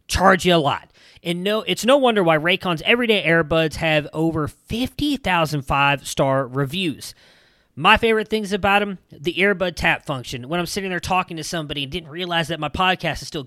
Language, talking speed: English, 185 wpm